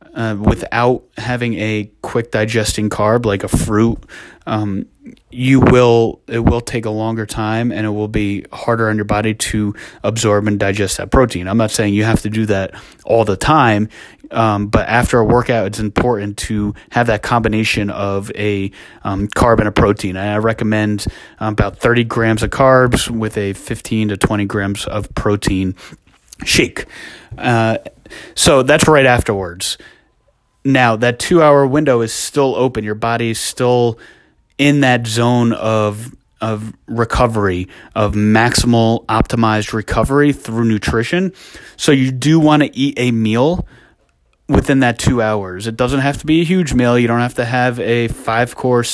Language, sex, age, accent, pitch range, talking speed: English, male, 30-49, American, 105-120 Hz, 165 wpm